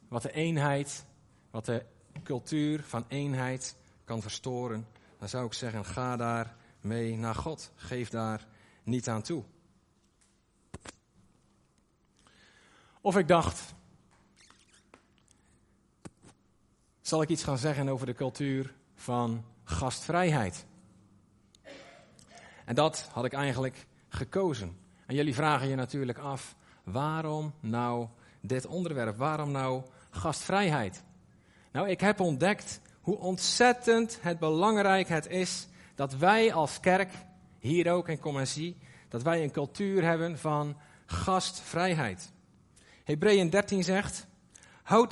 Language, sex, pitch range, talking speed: Dutch, male, 120-185 Hz, 115 wpm